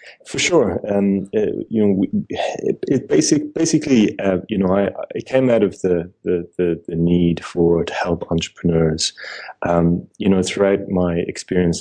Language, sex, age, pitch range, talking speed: English, male, 20-39, 85-95 Hz, 175 wpm